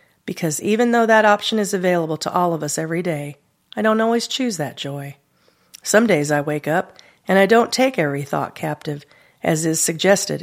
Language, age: English, 40-59